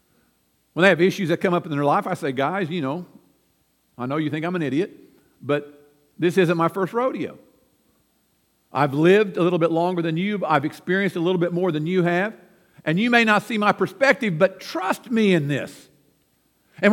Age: 50-69